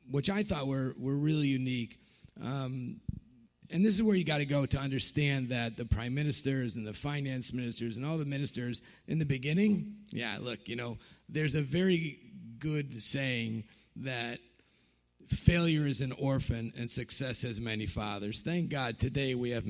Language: English